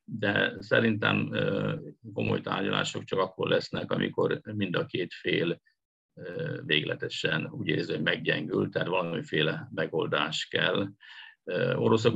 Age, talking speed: 50-69, 110 wpm